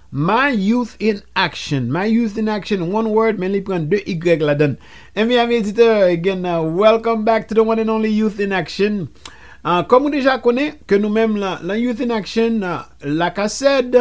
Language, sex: English, male